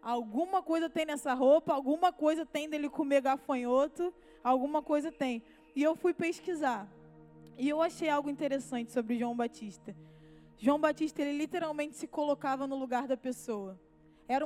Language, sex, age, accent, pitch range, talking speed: Portuguese, female, 20-39, Brazilian, 255-315 Hz, 155 wpm